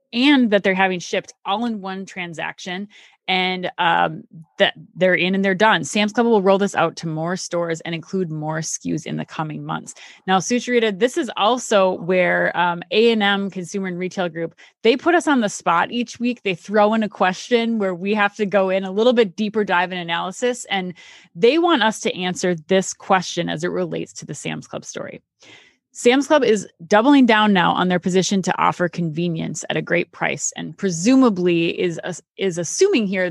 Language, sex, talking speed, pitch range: English, female, 200 wpm, 170-215 Hz